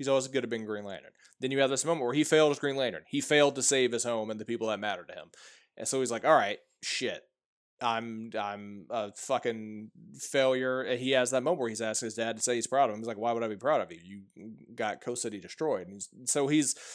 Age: 20-39